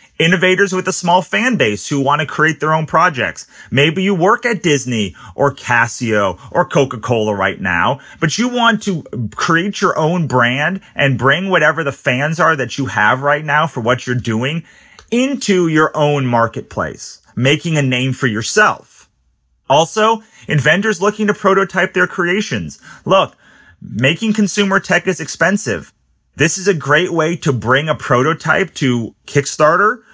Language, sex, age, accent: English, male, 30-49, American